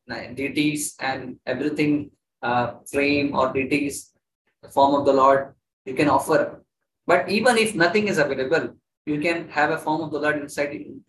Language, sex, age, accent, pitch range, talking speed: English, male, 20-39, Indian, 135-155 Hz, 160 wpm